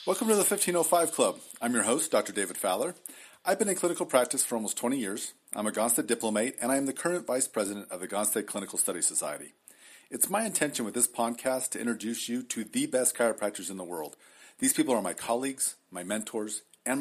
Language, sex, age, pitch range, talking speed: English, male, 40-59, 110-155 Hz, 215 wpm